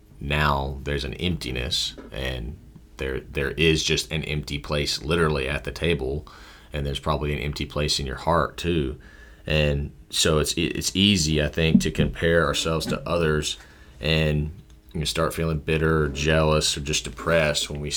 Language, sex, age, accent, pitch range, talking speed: English, male, 30-49, American, 75-85 Hz, 165 wpm